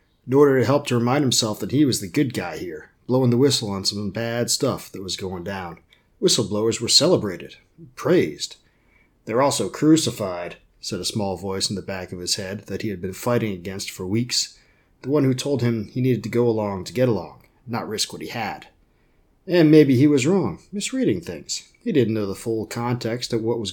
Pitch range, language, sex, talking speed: 100-125 Hz, English, male, 210 wpm